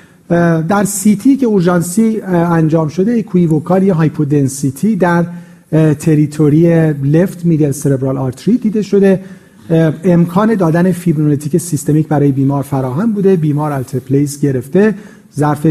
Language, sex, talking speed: Persian, male, 115 wpm